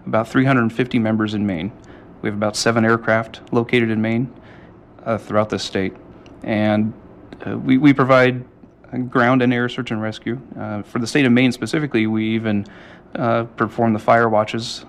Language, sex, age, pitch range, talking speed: English, male, 30-49, 105-120 Hz, 170 wpm